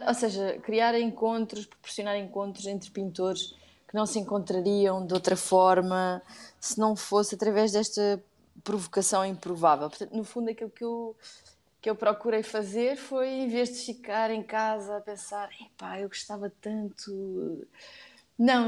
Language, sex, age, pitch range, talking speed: Portuguese, female, 20-39, 180-220 Hz, 140 wpm